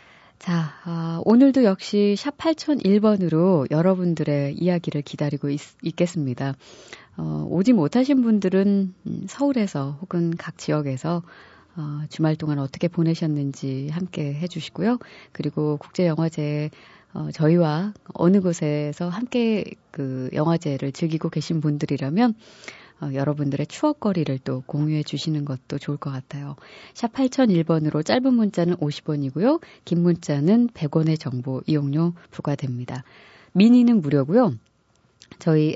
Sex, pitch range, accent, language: female, 145-195 Hz, native, Korean